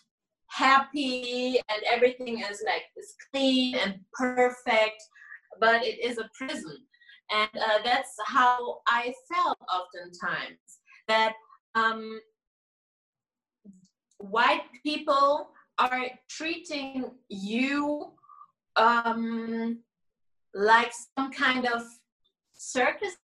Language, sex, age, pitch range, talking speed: English, female, 30-49, 225-290 Hz, 90 wpm